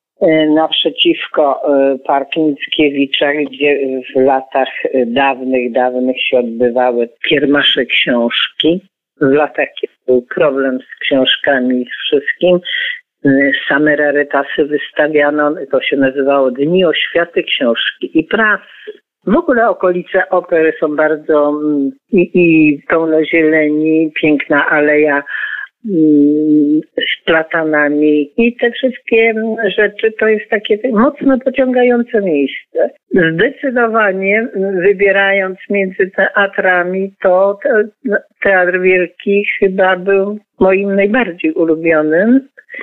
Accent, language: native, Polish